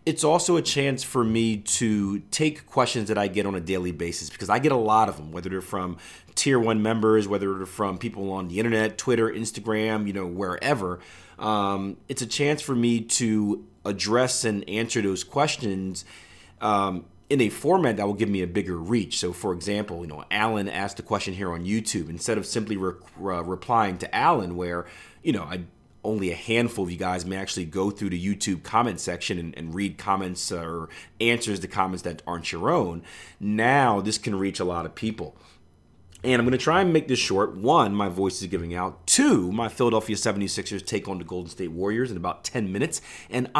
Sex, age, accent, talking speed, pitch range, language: male, 30-49, American, 205 wpm, 90-115 Hz, English